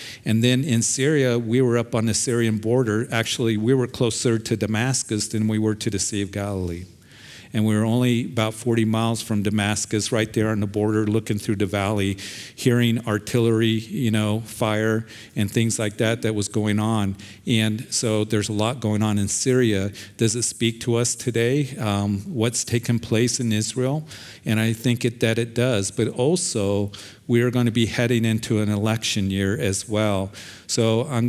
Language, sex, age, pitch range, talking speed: English, male, 50-69, 105-120 Hz, 190 wpm